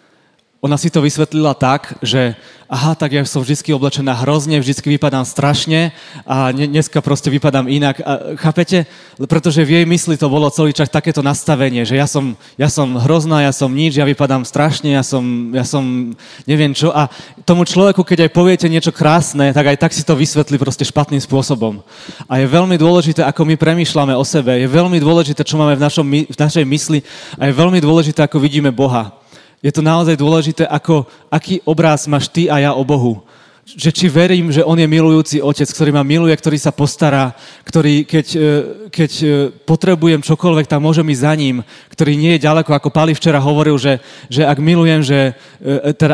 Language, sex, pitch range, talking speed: Czech, male, 140-160 Hz, 185 wpm